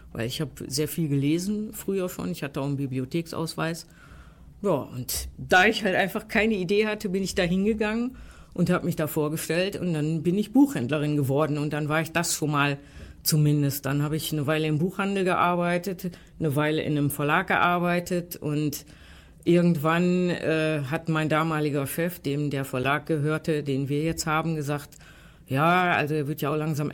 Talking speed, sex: 185 wpm, female